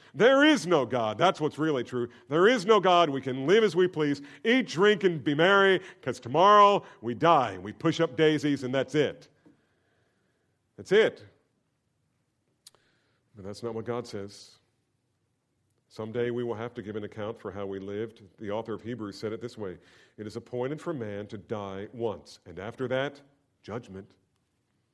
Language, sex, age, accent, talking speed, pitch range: English, male, 50-69, American, 180 wpm, 120-175 Hz